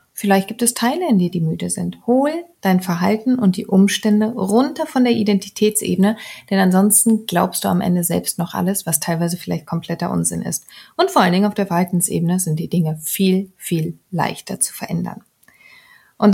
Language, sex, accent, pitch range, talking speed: German, female, German, 175-225 Hz, 185 wpm